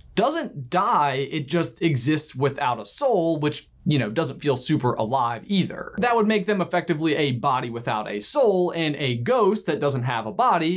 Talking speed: 190 wpm